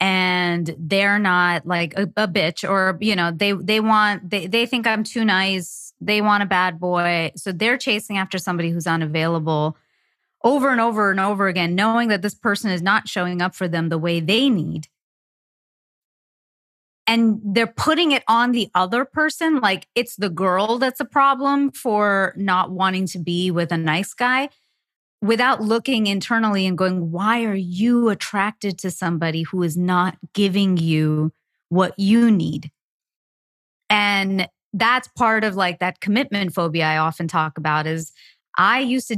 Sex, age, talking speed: female, 30-49, 165 wpm